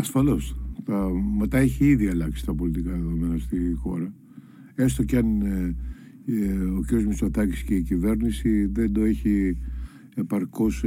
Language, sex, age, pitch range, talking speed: Greek, male, 50-69, 85-120 Hz, 125 wpm